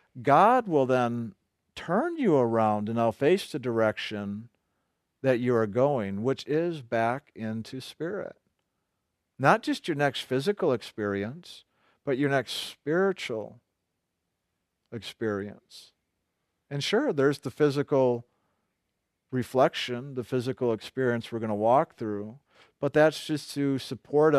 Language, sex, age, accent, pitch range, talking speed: English, male, 50-69, American, 110-145 Hz, 125 wpm